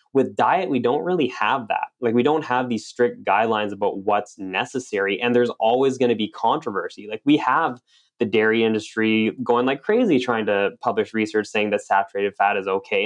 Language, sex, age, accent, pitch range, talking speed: English, male, 10-29, American, 105-130 Hz, 200 wpm